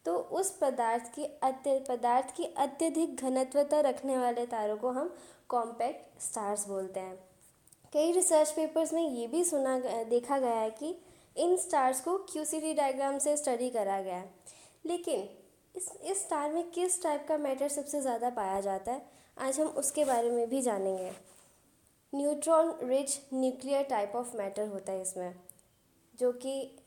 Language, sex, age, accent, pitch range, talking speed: Hindi, female, 20-39, native, 235-295 Hz, 160 wpm